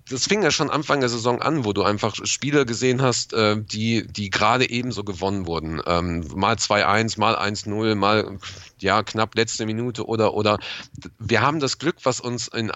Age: 40-59